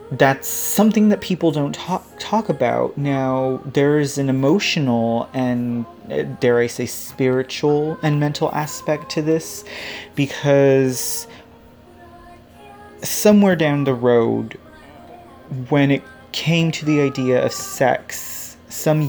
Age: 30-49